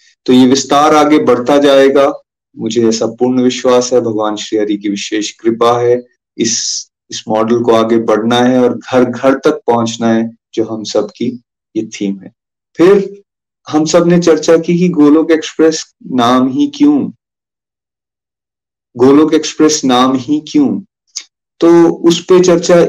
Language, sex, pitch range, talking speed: Hindi, male, 120-155 Hz, 150 wpm